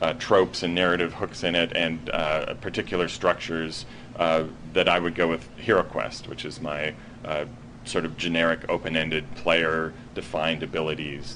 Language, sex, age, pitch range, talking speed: English, male, 30-49, 80-90 Hz, 150 wpm